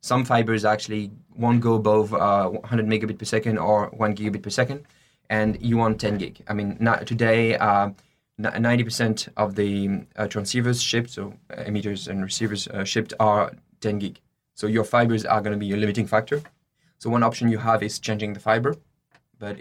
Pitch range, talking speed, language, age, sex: 105-120 Hz, 185 wpm, English, 20-39, male